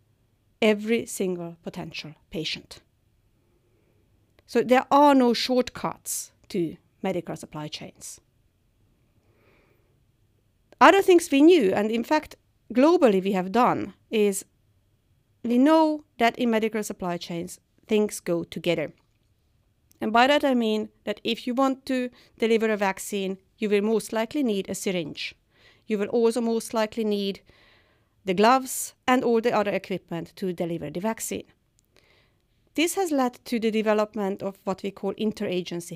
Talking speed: 140 wpm